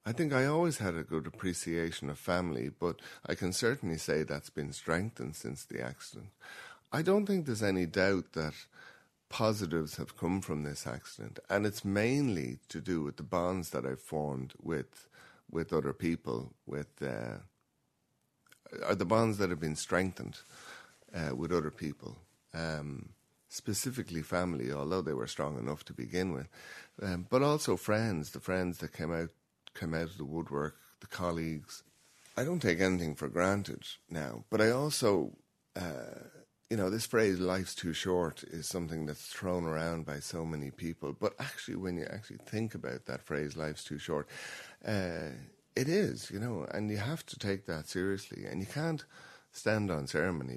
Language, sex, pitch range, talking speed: English, male, 80-105 Hz, 170 wpm